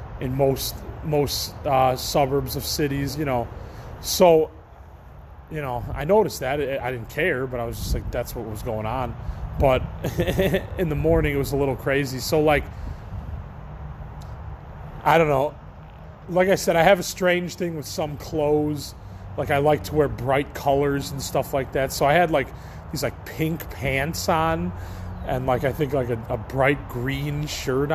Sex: male